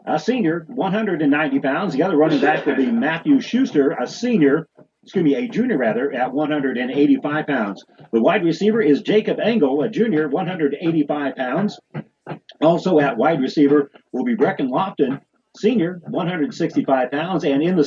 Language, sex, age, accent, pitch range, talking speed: English, male, 40-59, American, 135-220 Hz, 155 wpm